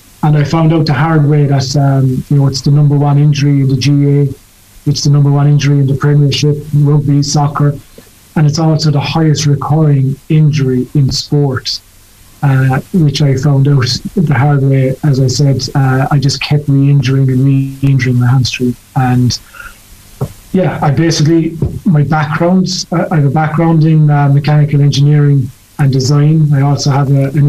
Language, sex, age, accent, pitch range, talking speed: English, male, 30-49, British, 135-150 Hz, 170 wpm